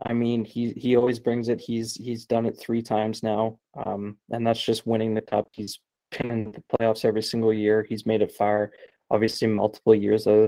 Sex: male